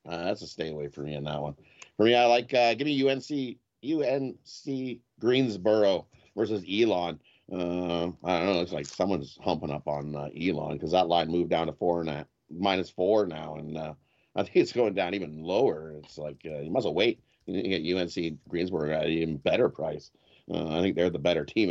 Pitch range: 75-100 Hz